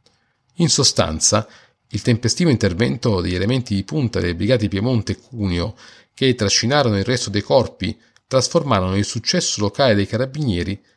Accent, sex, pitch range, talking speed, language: native, male, 100-125 Hz, 140 wpm, Italian